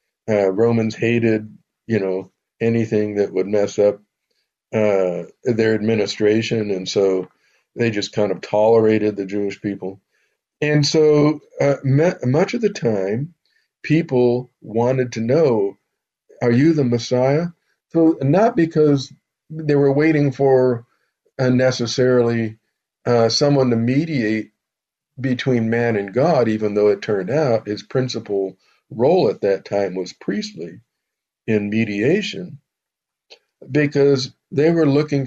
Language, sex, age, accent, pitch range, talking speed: English, male, 50-69, American, 110-145 Hz, 125 wpm